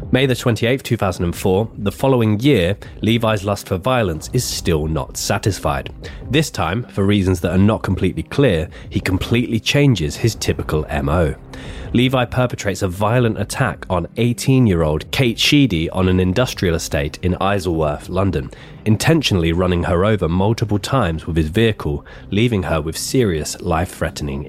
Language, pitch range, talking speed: English, 80-115 Hz, 145 wpm